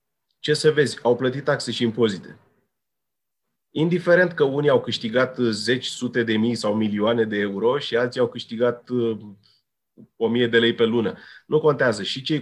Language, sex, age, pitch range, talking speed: Romanian, male, 30-49, 115-140 Hz, 175 wpm